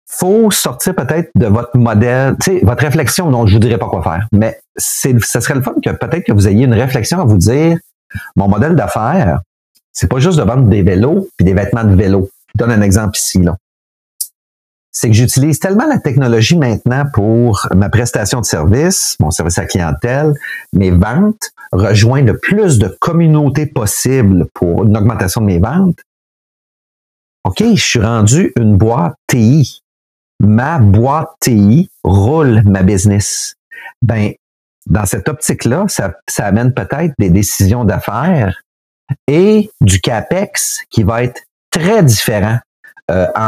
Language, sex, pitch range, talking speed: French, male, 100-145 Hz, 165 wpm